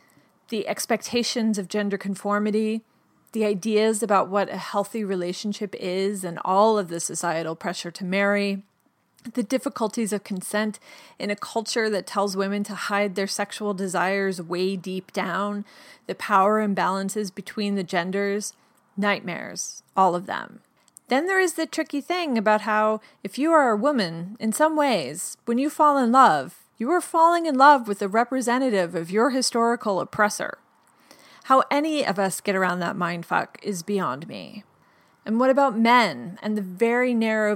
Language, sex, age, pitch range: English, female, 30-49, 195-235 Hz